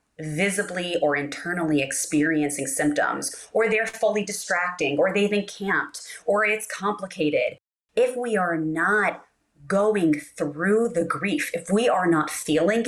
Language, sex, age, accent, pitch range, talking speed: English, female, 30-49, American, 180-250 Hz, 130 wpm